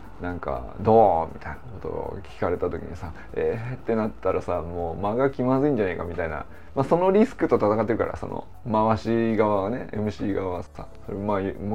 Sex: male